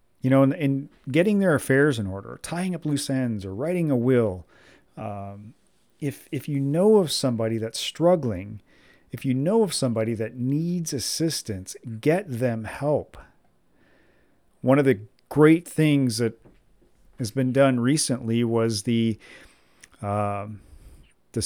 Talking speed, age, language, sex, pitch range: 145 wpm, 40-59, English, male, 115-155 Hz